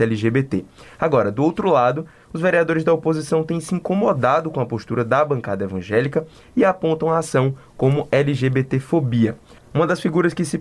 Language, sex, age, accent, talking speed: Portuguese, male, 20-39, Brazilian, 165 wpm